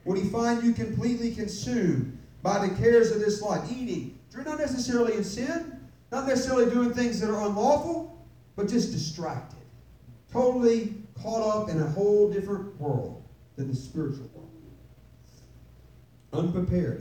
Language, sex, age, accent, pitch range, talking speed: English, male, 40-59, American, 125-180 Hz, 145 wpm